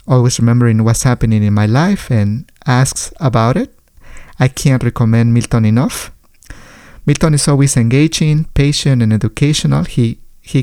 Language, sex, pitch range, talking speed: English, male, 115-140 Hz, 140 wpm